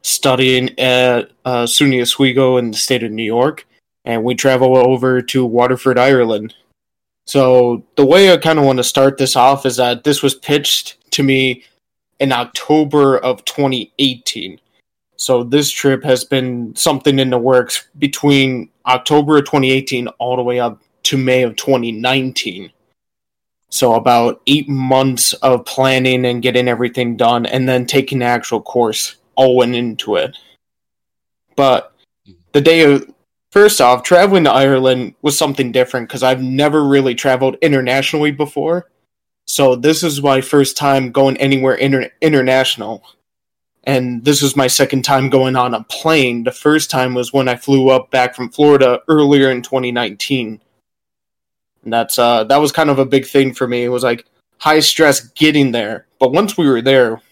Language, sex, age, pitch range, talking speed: English, male, 20-39, 125-140 Hz, 165 wpm